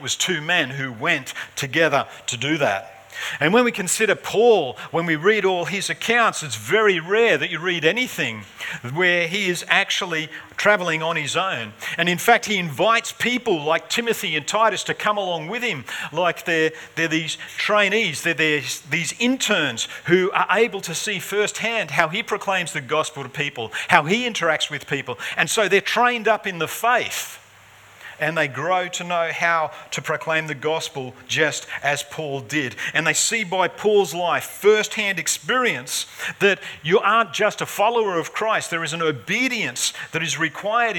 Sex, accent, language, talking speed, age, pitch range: male, Australian, English, 175 wpm, 50-69, 145-205 Hz